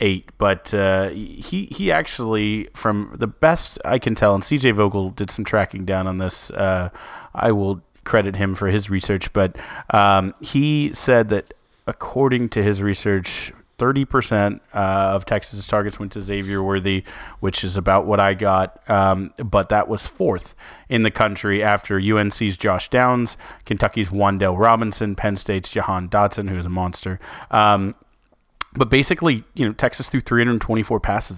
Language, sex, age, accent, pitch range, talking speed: English, male, 30-49, American, 95-115 Hz, 165 wpm